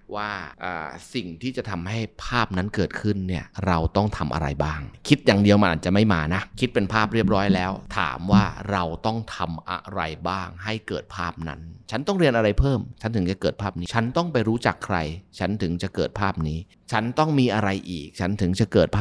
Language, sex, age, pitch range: Thai, male, 30-49, 85-110 Hz